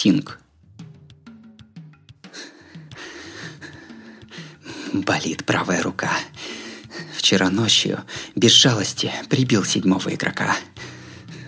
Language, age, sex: Russian, 20-39, male